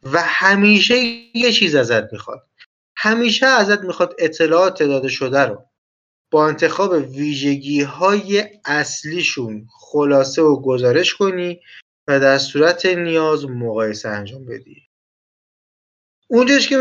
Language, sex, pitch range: Persian, male, 125-180 Hz